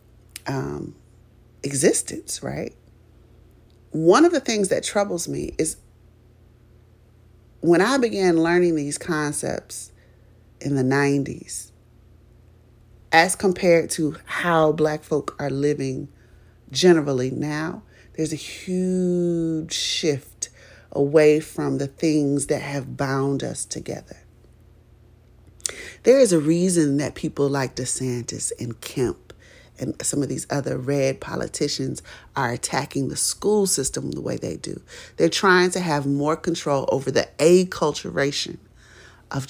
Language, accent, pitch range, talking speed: English, American, 115-165 Hz, 120 wpm